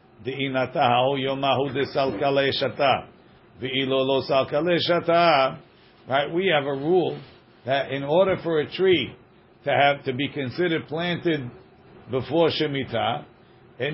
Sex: male